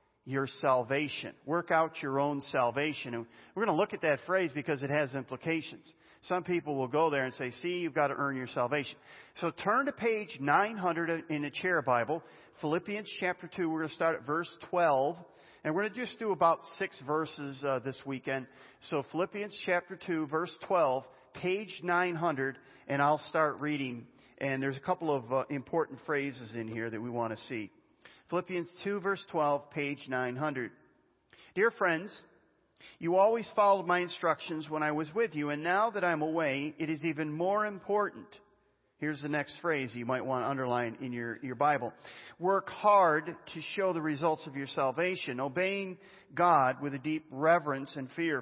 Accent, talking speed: American, 185 wpm